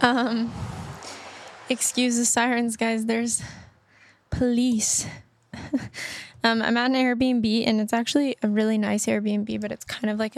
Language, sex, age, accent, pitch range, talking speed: English, female, 10-29, American, 215-240 Hz, 140 wpm